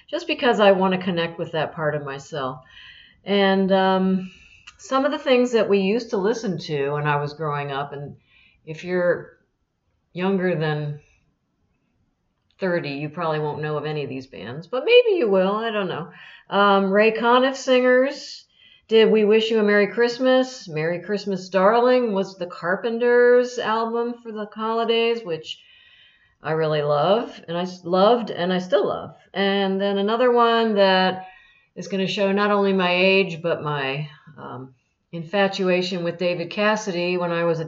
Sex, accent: female, American